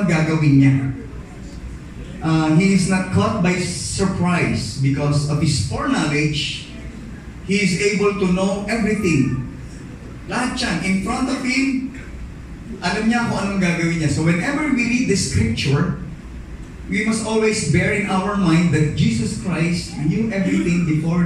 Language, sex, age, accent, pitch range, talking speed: English, male, 20-39, Filipino, 135-185 Hz, 140 wpm